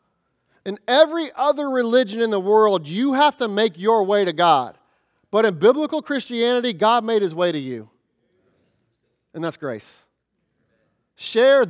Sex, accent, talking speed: male, American, 150 wpm